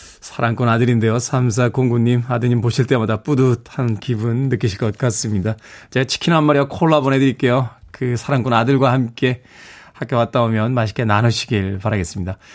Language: Korean